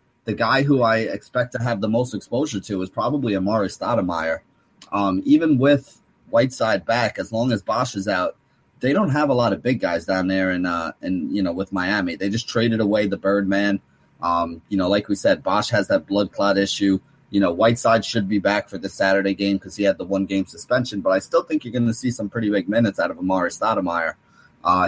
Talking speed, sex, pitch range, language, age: 230 wpm, male, 95-115 Hz, English, 30-49